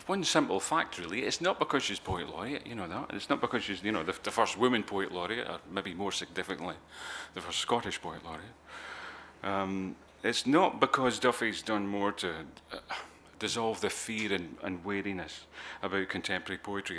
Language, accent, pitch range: English, British, 85-105 Hz